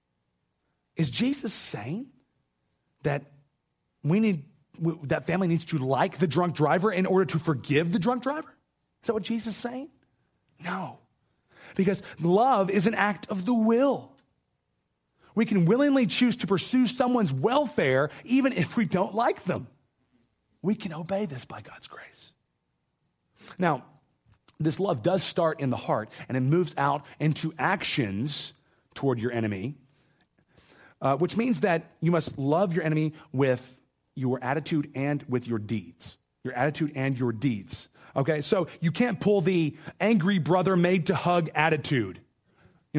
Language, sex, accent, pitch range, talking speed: English, male, American, 135-185 Hz, 150 wpm